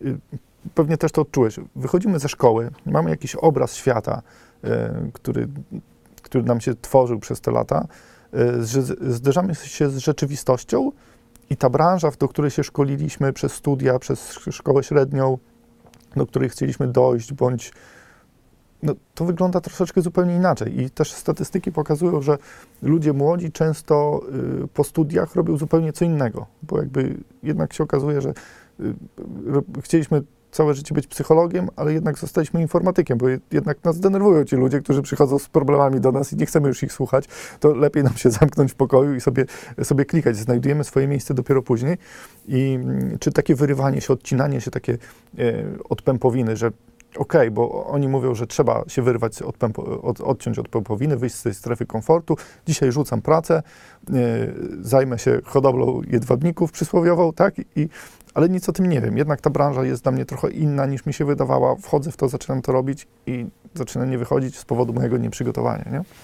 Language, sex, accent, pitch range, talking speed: Polish, male, native, 130-155 Hz, 170 wpm